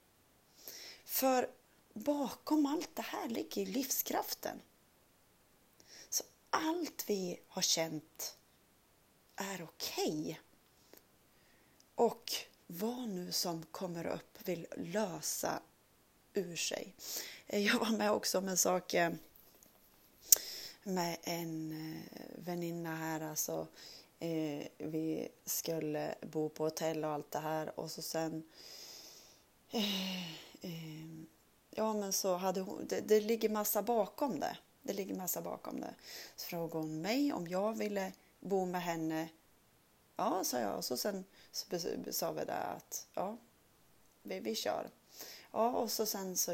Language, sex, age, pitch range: Swedish, female, 30-49, 160-220 Hz